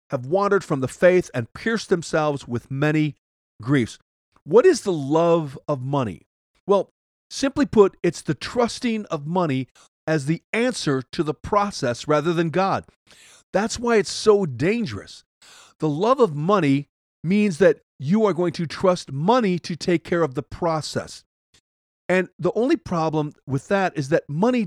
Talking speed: 160 wpm